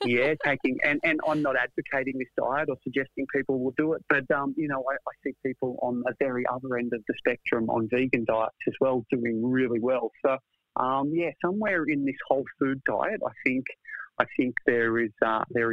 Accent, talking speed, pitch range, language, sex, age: Australian, 215 wpm, 115-135 Hz, English, male, 40-59